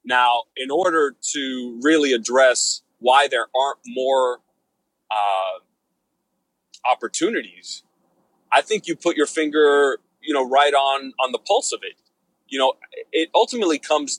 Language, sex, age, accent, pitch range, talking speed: English, male, 30-49, American, 115-170 Hz, 135 wpm